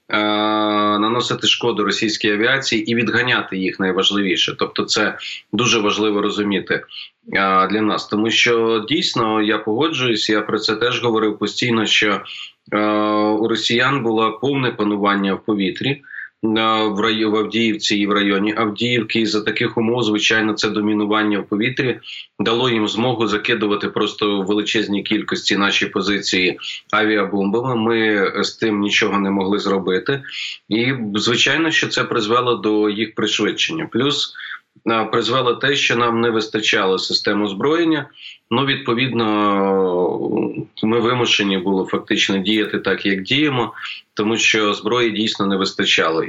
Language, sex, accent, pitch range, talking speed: Ukrainian, male, native, 105-115 Hz, 130 wpm